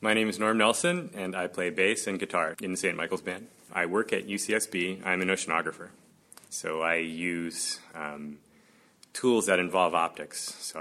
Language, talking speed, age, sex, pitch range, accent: English, 180 wpm, 30-49, male, 80-100 Hz, American